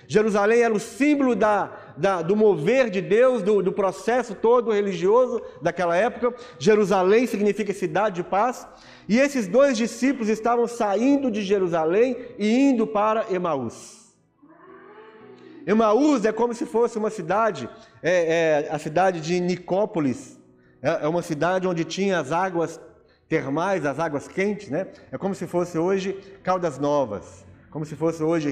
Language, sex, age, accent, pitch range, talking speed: Portuguese, male, 40-59, Brazilian, 165-235 Hz, 145 wpm